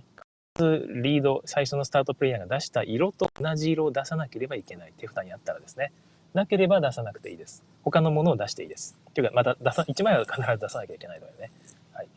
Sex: male